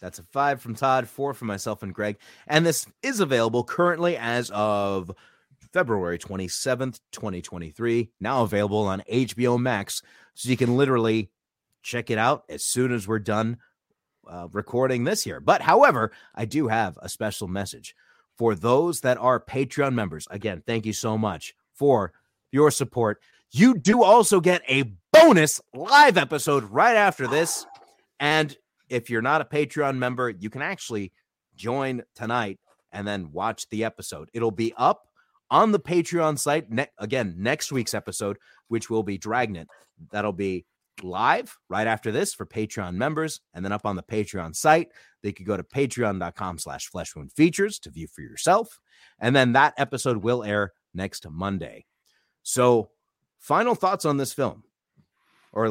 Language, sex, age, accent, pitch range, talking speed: English, male, 30-49, American, 105-140 Hz, 160 wpm